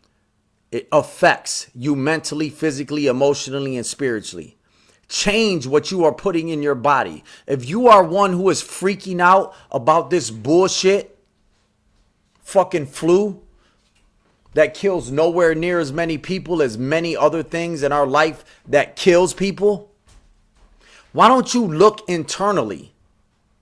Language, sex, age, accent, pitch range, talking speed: English, male, 30-49, American, 150-210 Hz, 130 wpm